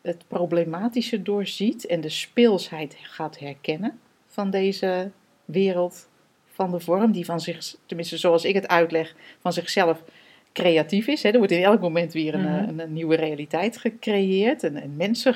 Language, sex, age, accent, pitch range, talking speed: Dutch, female, 40-59, Dutch, 170-235 Hz, 160 wpm